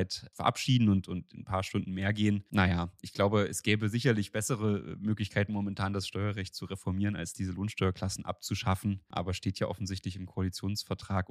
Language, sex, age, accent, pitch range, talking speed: German, male, 30-49, German, 95-125 Hz, 170 wpm